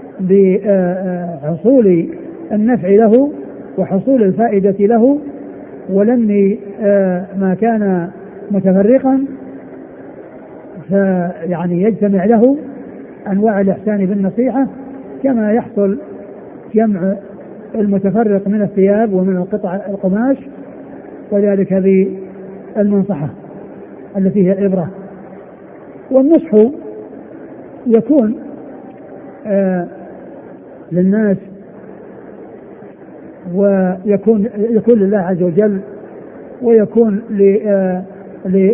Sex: male